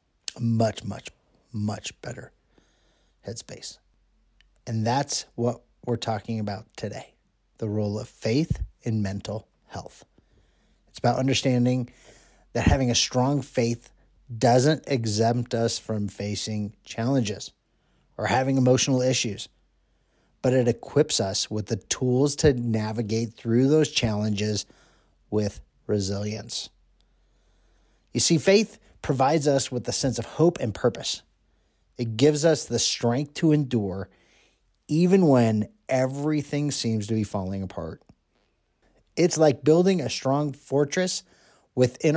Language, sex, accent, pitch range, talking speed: English, male, American, 105-135 Hz, 120 wpm